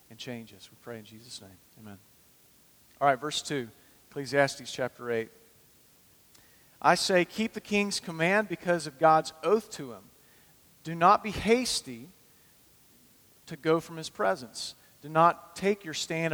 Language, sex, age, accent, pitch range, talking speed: English, male, 40-59, American, 140-175 Hz, 155 wpm